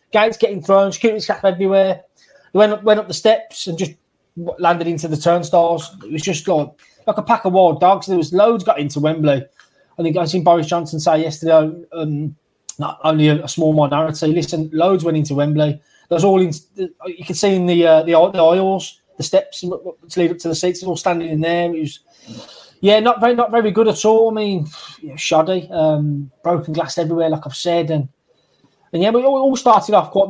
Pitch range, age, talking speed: 155-185 Hz, 20-39, 215 wpm